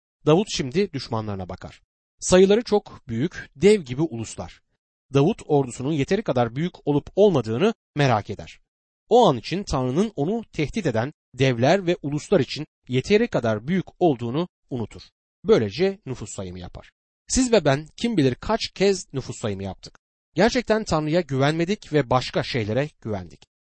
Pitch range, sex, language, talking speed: 115-175 Hz, male, Turkish, 140 wpm